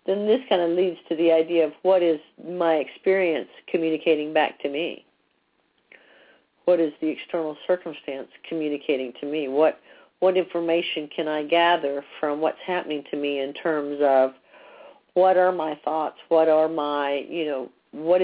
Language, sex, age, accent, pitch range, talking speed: English, female, 50-69, American, 150-175 Hz, 160 wpm